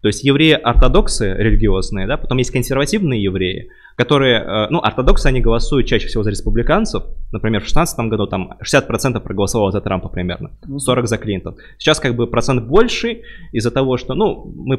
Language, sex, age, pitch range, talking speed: Russian, male, 20-39, 105-130 Hz, 165 wpm